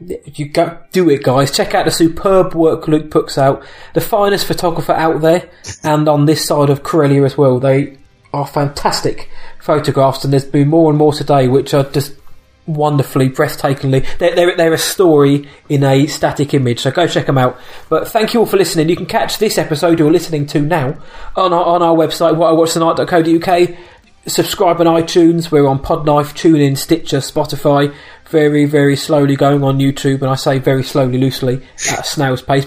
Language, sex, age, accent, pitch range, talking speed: English, male, 20-39, British, 140-170 Hz, 185 wpm